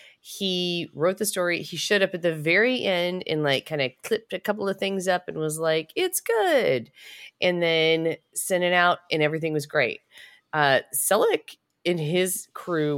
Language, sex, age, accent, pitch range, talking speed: English, female, 30-49, American, 130-185 Hz, 185 wpm